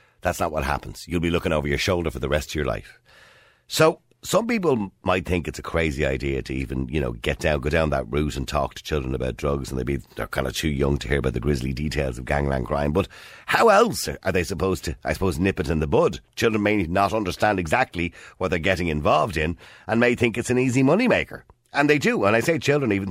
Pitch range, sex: 80-120 Hz, male